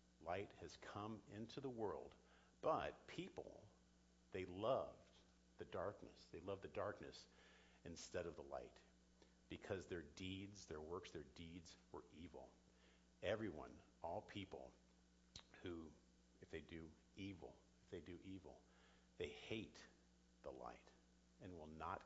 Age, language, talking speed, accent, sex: 50-69, English, 130 wpm, American, male